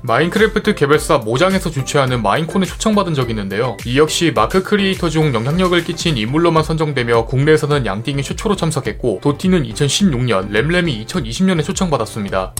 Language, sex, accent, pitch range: Korean, male, native, 120-185 Hz